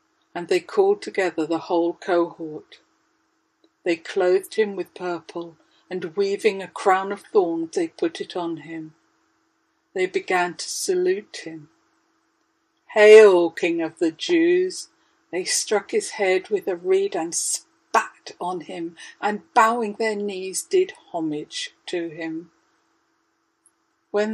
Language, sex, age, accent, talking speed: English, female, 60-79, British, 130 wpm